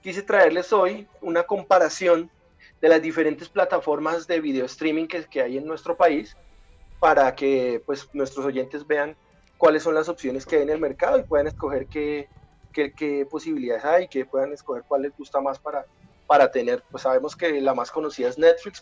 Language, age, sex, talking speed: English, 30-49, male, 190 wpm